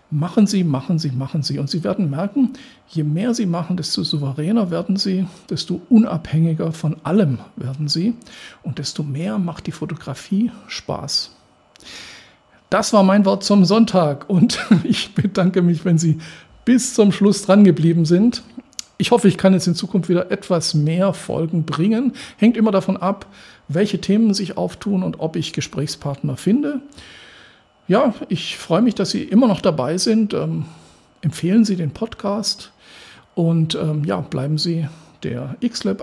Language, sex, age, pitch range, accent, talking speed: German, male, 50-69, 155-200 Hz, German, 160 wpm